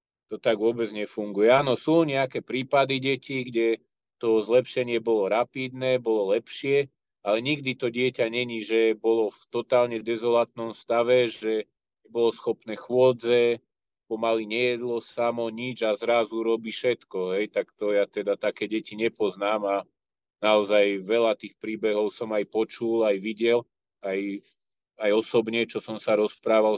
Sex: male